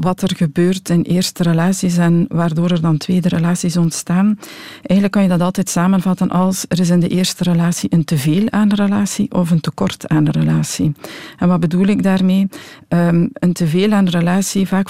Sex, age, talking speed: female, 50-69, 195 wpm